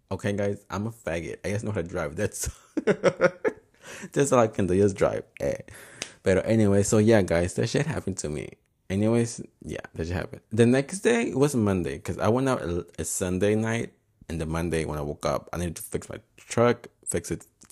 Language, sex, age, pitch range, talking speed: English, male, 20-39, 90-115 Hz, 215 wpm